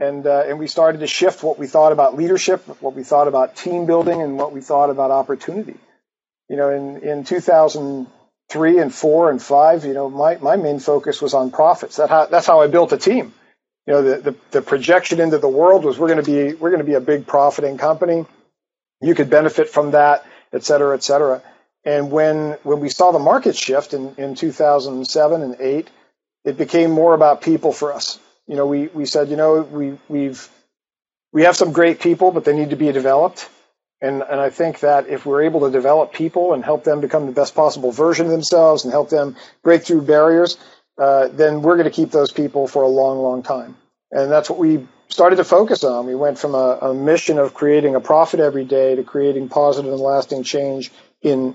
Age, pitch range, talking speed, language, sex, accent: 50-69, 140-160 Hz, 220 wpm, English, male, American